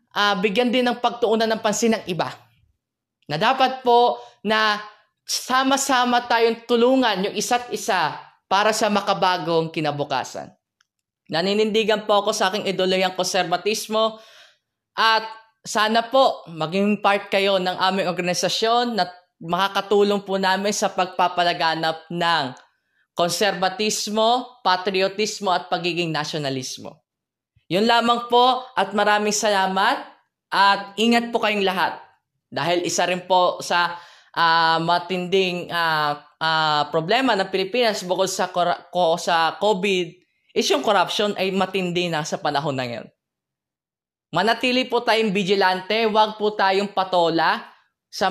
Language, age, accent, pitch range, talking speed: Filipino, 20-39, native, 175-220 Hz, 125 wpm